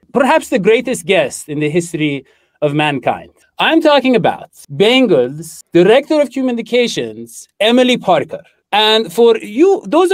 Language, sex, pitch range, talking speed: English, male, 175-255 Hz, 130 wpm